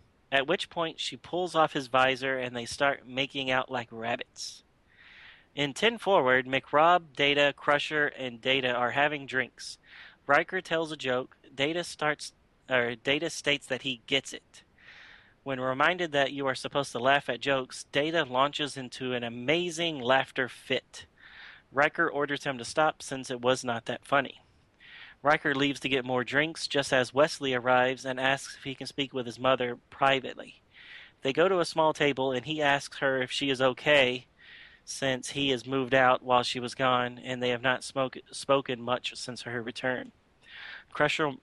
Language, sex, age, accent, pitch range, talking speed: English, male, 30-49, American, 125-145 Hz, 175 wpm